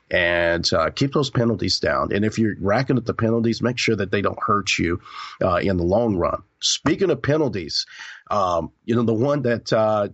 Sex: male